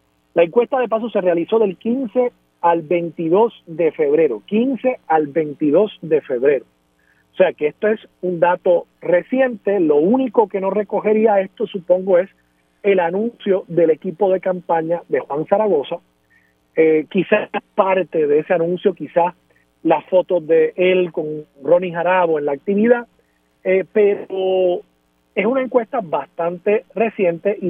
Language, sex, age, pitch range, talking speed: Spanish, male, 40-59, 165-220 Hz, 145 wpm